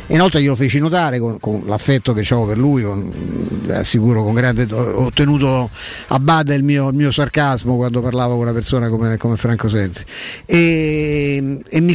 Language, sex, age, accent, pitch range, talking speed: Italian, male, 50-69, native, 120-145 Hz, 185 wpm